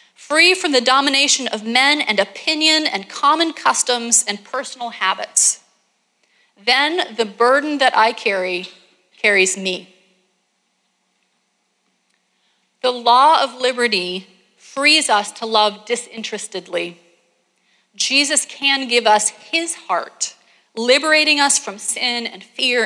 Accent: American